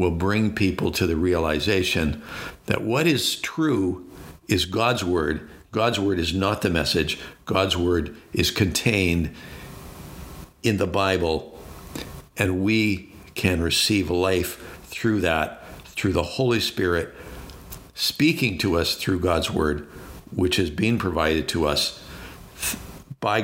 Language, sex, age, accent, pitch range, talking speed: English, male, 60-79, American, 85-115 Hz, 130 wpm